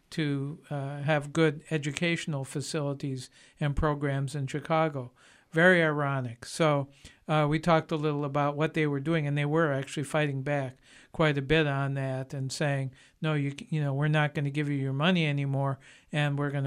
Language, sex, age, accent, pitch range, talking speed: English, male, 60-79, American, 140-160 Hz, 185 wpm